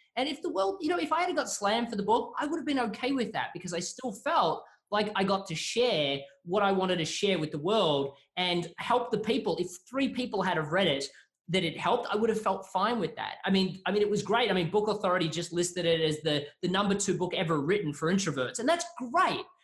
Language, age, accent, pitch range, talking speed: English, 20-39, Australian, 175-235 Hz, 260 wpm